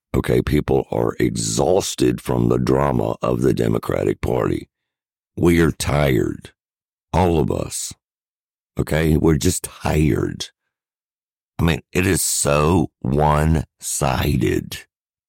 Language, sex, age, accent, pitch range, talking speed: English, male, 50-69, American, 70-80 Hz, 105 wpm